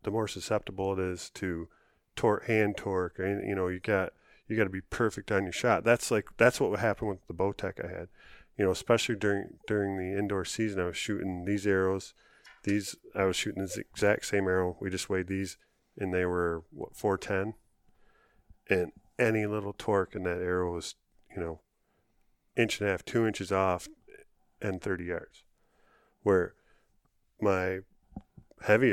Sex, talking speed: male, 180 wpm